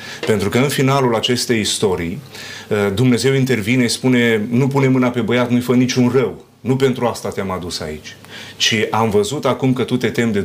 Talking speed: 195 wpm